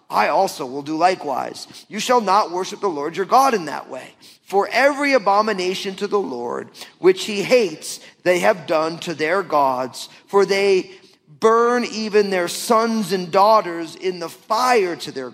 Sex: male